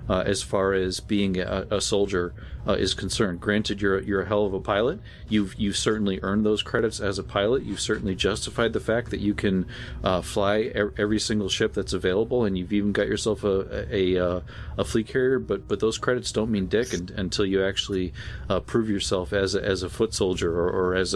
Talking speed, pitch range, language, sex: 220 wpm, 95-105 Hz, English, male